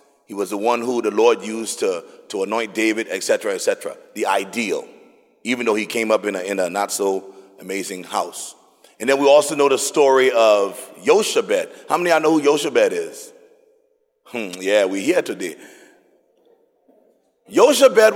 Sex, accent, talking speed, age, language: male, American, 175 wpm, 40-59, English